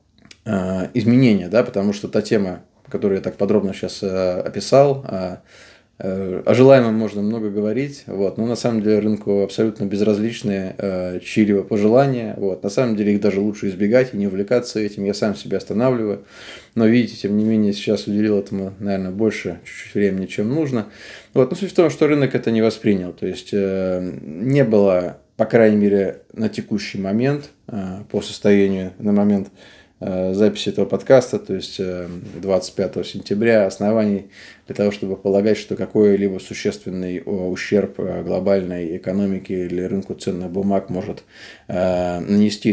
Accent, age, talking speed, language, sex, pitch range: native, 20-39, 145 wpm, Russian, male, 95-110 Hz